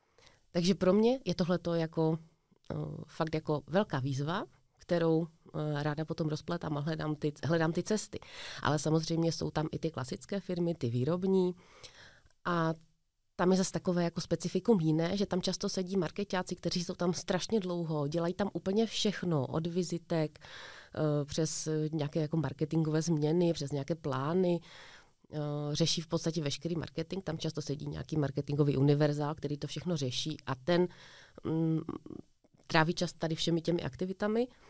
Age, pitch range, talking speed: 30-49, 155-180 Hz, 145 wpm